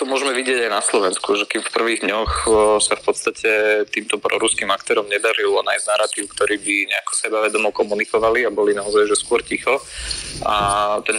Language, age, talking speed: Slovak, 20-39, 180 wpm